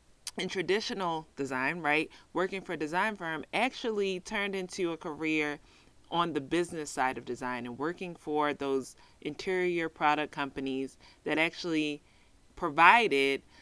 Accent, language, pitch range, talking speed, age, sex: American, English, 140-185 Hz, 130 wpm, 20-39, female